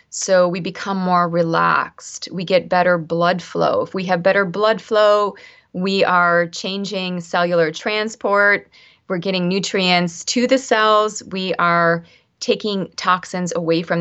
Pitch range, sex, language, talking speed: 175-210 Hz, female, Swedish, 140 wpm